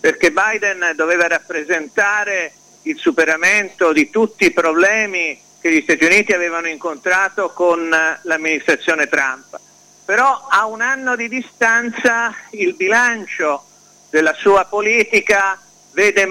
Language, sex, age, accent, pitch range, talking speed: Italian, male, 50-69, native, 160-220 Hz, 115 wpm